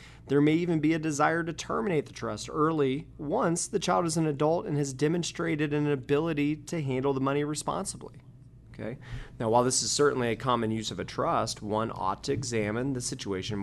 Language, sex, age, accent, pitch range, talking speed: English, male, 30-49, American, 100-130 Hz, 200 wpm